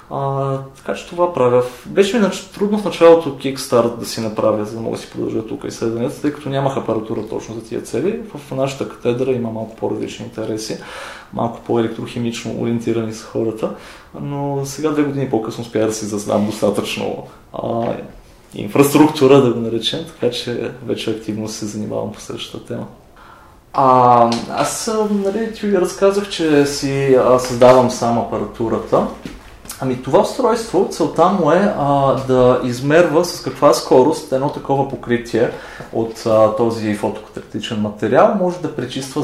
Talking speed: 155 wpm